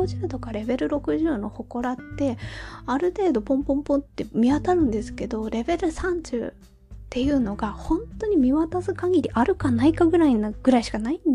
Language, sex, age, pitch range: Japanese, female, 20-39, 220-310 Hz